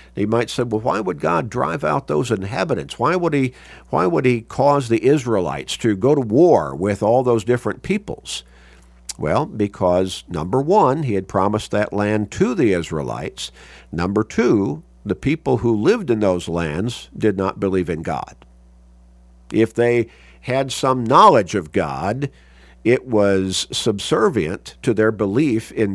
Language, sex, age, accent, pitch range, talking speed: English, male, 50-69, American, 80-120 Hz, 155 wpm